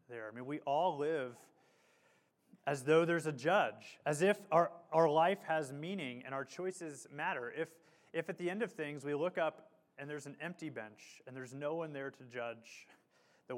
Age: 30-49